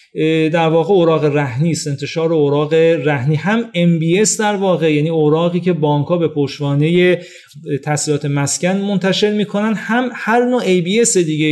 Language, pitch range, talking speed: Persian, 150-200 Hz, 150 wpm